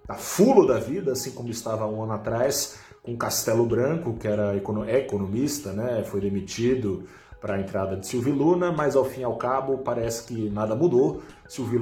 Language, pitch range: Portuguese, 105-125 Hz